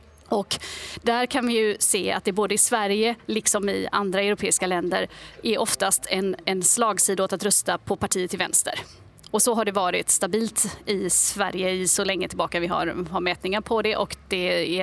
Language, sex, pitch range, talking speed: English, female, 190-225 Hz, 195 wpm